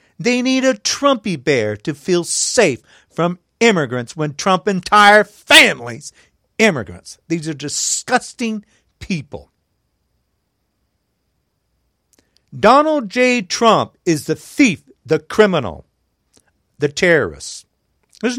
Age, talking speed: 50-69, 100 wpm